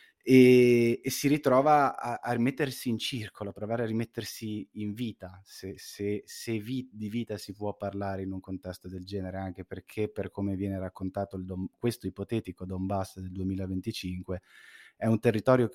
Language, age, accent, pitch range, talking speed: Italian, 20-39, native, 95-115 Hz, 175 wpm